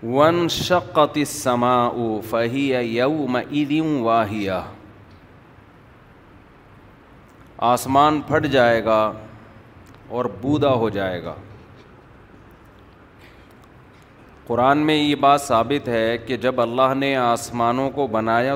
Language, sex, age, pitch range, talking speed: Urdu, male, 40-59, 110-145 Hz, 85 wpm